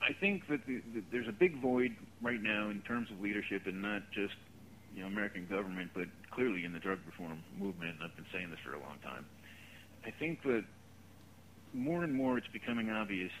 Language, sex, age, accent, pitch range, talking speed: English, male, 40-59, American, 90-110 Hz, 205 wpm